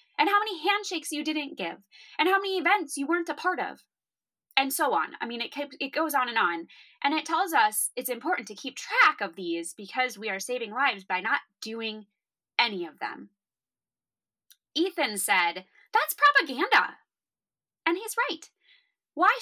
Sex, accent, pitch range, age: female, American, 240-355 Hz, 20-39